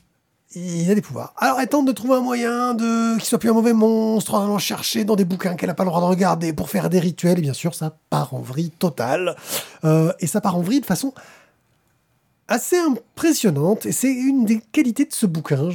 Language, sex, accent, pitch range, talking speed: French, male, French, 155-215 Hz, 235 wpm